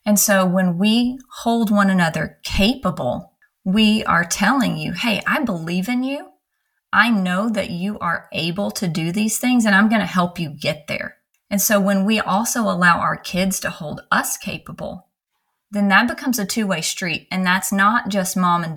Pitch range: 175-225 Hz